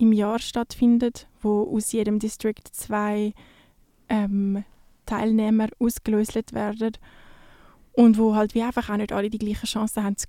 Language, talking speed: English, 145 wpm